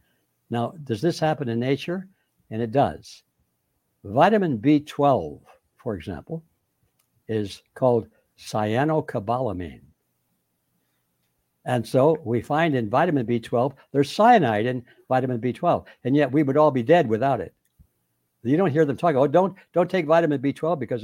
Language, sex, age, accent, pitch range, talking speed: English, male, 60-79, American, 100-150 Hz, 140 wpm